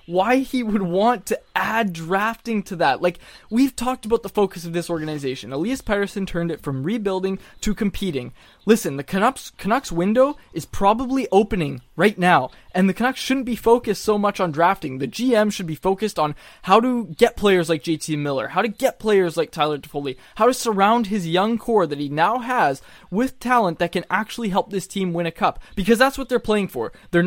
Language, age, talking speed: English, 20-39, 205 wpm